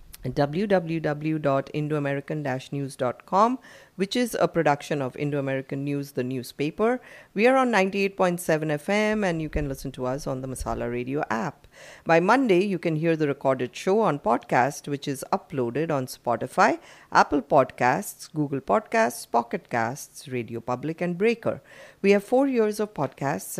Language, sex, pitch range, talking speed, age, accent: English, female, 140-195 Hz, 145 wpm, 50-69, Indian